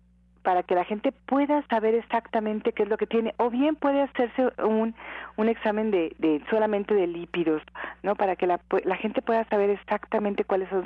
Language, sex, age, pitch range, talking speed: Spanish, female, 40-59, 180-220 Hz, 195 wpm